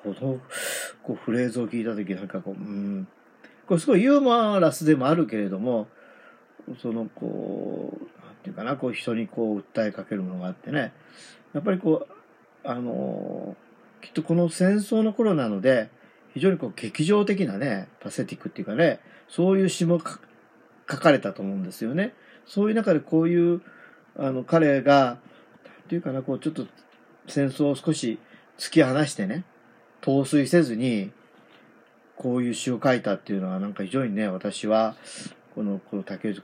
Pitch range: 105-160 Hz